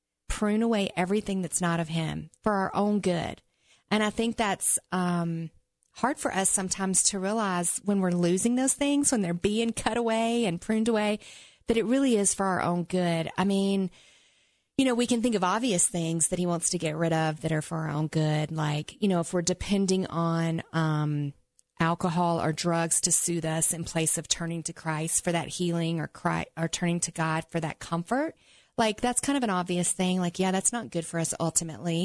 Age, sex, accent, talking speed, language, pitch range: 30-49, female, American, 210 wpm, English, 170-220 Hz